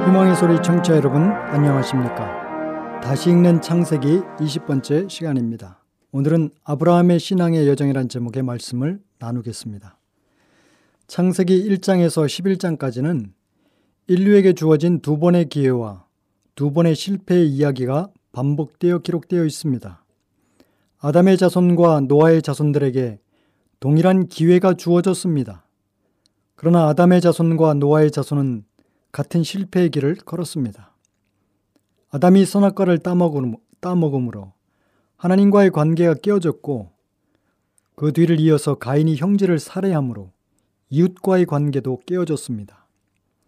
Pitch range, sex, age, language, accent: 120-175 Hz, male, 40-59, Korean, native